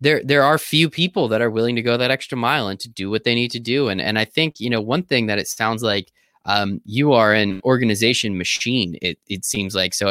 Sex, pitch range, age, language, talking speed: male, 105-135 Hz, 20-39, English, 260 wpm